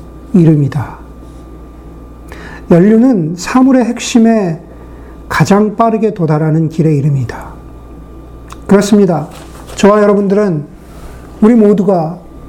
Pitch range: 155-195 Hz